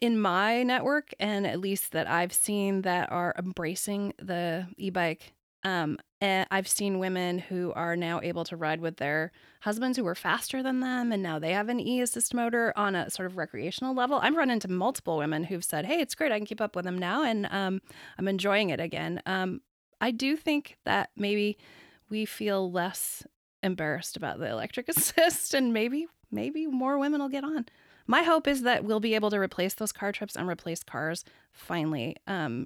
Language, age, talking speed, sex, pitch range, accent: English, 20-39, 200 wpm, female, 180-240 Hz, American